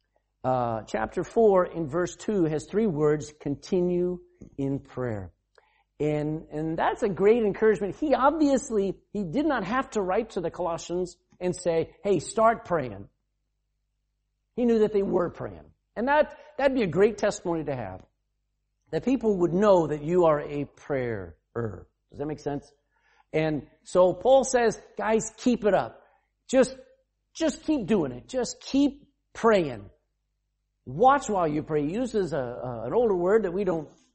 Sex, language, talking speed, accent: male, English, 160 wpm, American